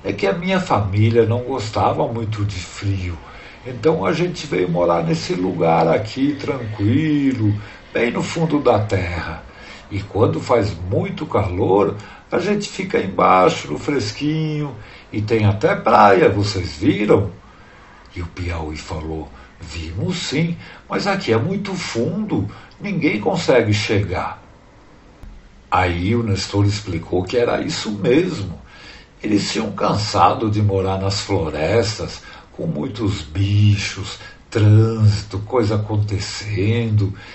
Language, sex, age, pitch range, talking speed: Portuguese, male, 60-79, 95-120 Hz, 120 wpm